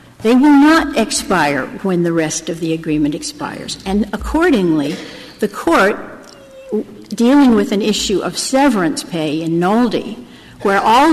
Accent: American